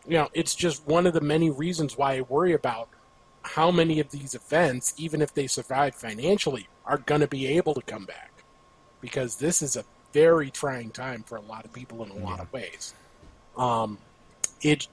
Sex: male